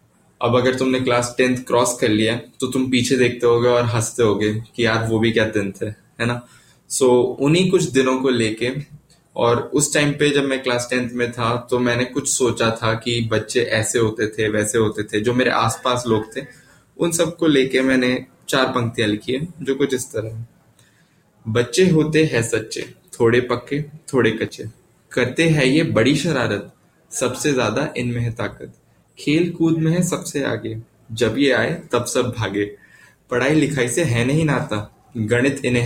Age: 20-39